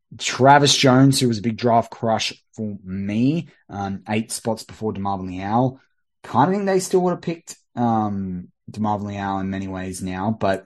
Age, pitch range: 20-39, 95-120 Hz